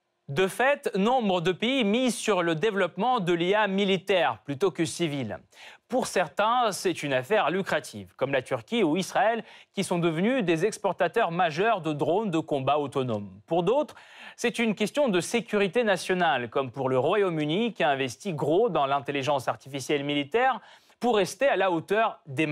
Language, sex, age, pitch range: French, male, 30-49, 150-215 Hz